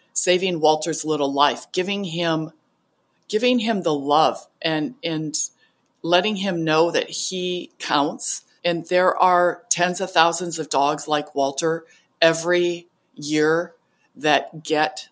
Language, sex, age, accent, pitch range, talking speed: English, female, 40-59, American, 150-175 Hz, 125 wpm